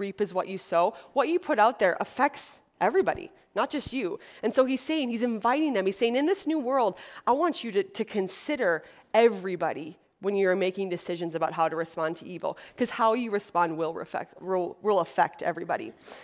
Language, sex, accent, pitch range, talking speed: English, female, American, 185-245 Hz, 205 wpm